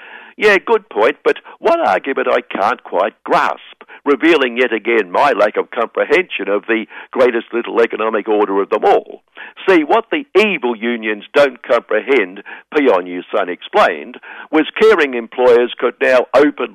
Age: 60-79